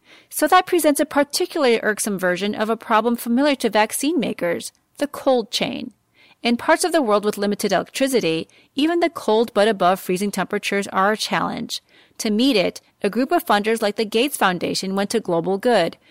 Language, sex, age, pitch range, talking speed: English, female, 30-49, 195-265 Hz, 185 wpm